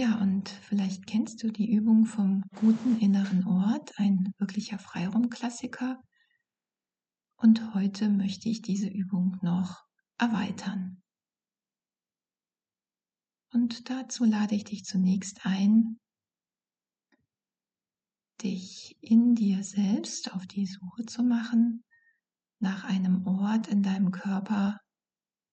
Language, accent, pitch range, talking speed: German, German, 195-225 Hz, 105 wpm